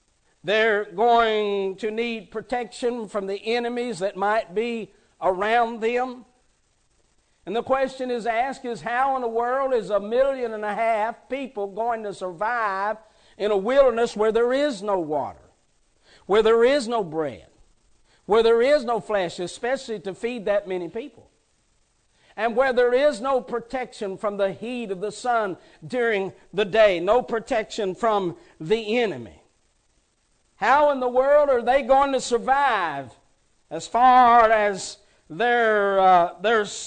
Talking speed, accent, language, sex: 150 wpm, American, English, male